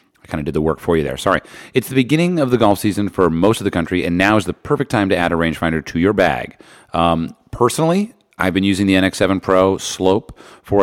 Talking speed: 250 wpm